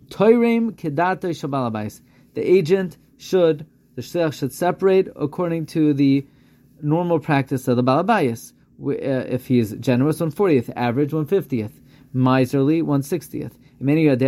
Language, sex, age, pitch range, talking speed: English, male, 30-49, 130-165 Hz, 95 wpm